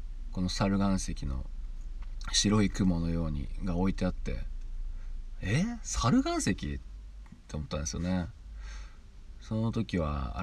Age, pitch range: 40-59, 75-105 Hz